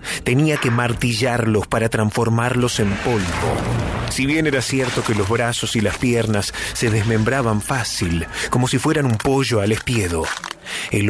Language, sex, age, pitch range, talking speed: Spanish, male, 30-49, 105-130 Hz, 150 wpm